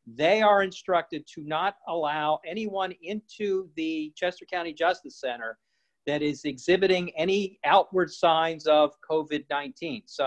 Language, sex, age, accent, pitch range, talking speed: English, male, 50-69, American, 140-180 Hz, 130 wpm